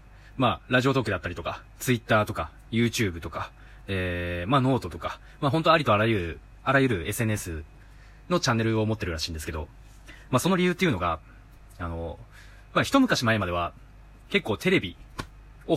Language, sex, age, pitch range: Japanese, male, 20-39, 95-140 Hz